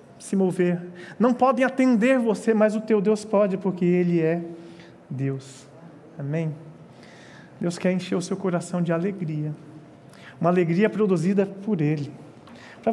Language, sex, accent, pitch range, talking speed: Portuguese, male, Brazilian, 170-250 Hz, 140 wpm